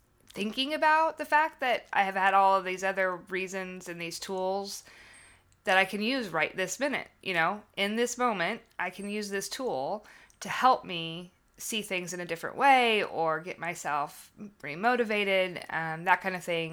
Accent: American